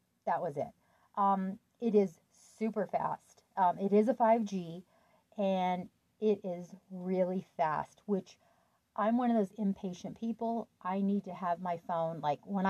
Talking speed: 155 wpm